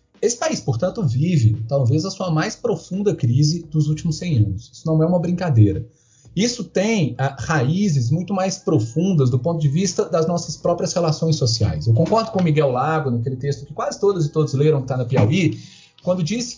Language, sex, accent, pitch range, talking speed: Portuguese, male, Brazilian, 135-180 Hz, 195 wpm